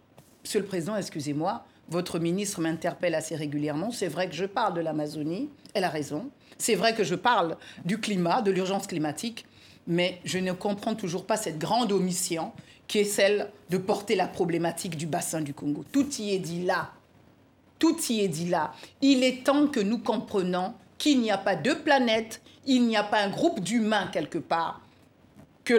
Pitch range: 190-270 Hz